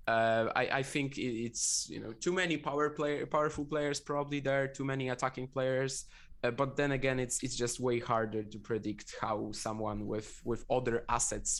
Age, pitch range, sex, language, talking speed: 20-39, 110-135 Hz, male, English, 185 wpm